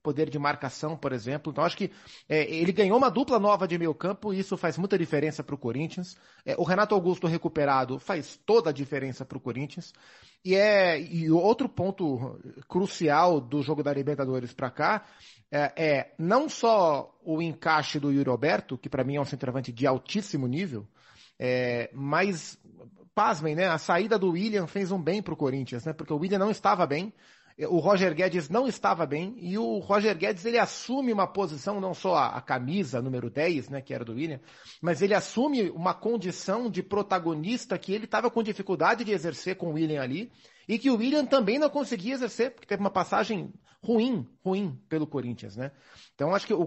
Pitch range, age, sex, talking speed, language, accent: 145-200 Hz, 30-49, male, 190 wpm, Portuguese, Brazilian